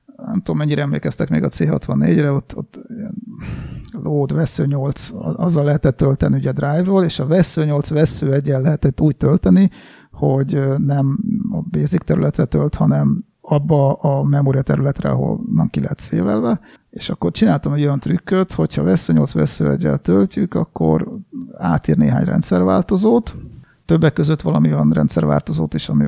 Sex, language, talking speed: male, Hungarian, 150 wpm